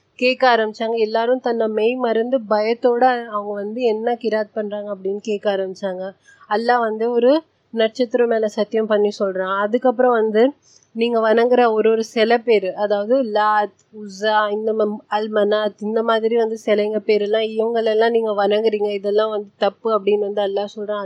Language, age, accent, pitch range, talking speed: Tamil, 30-49, native, 205-230 Hz, 145 wpm